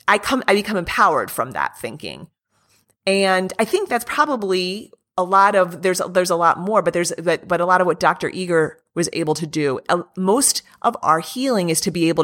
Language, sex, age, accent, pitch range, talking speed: English, female, 30-49, American, 160-195 Hz, 210 wpm